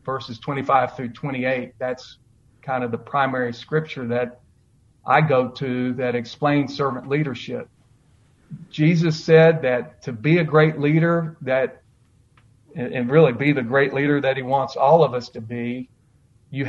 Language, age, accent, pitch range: English, 50-69, American, 125-150 Hz